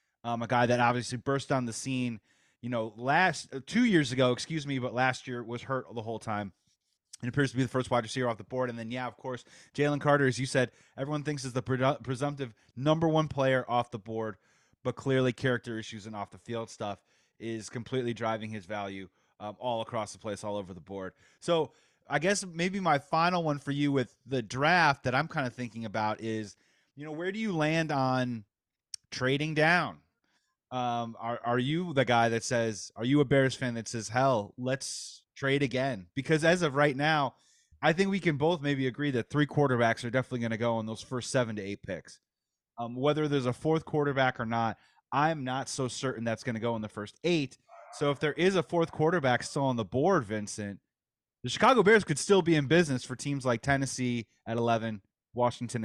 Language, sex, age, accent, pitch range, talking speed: English, male, 30-49, American, 115-145 Hz, 215 wpm